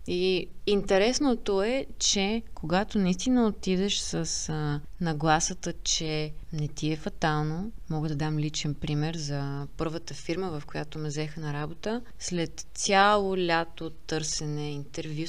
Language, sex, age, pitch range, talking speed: Bulgarian, female, 20-39, 155-195 Hz, 130 wpm